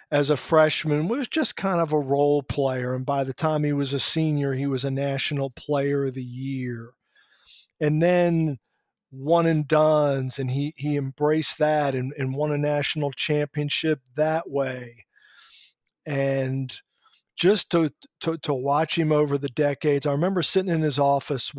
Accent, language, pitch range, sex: American, English, 135-155 Hz, male